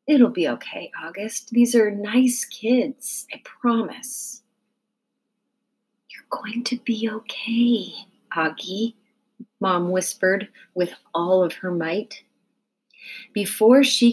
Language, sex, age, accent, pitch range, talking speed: English, female, 30-49, American, 195-255 Hz, 105 wpm